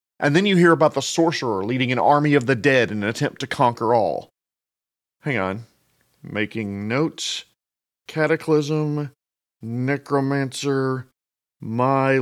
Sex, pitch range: male, 125-160 Hz